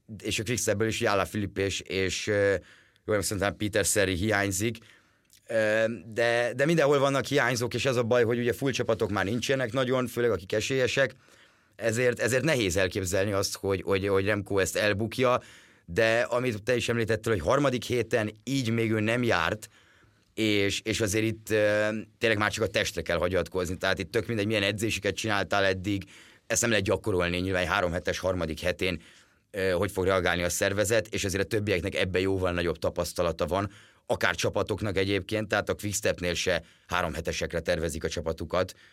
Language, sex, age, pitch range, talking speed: Hungarian, male, 30-49, 95-115 Hz, 170 wpm